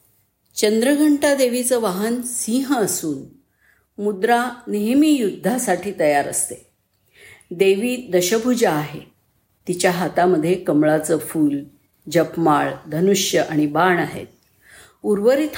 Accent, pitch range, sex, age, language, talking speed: native, 160-215 Hz, female, 50-69, Marathi, 90 wpm